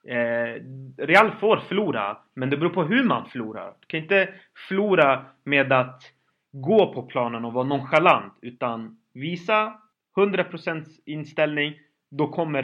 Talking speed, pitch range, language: 135 wpm, 135-185 Hz, Swedish